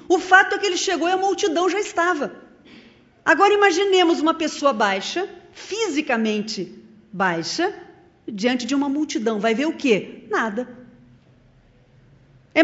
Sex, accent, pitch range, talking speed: female, Brazilian, 215-350 Hz, 135 wpm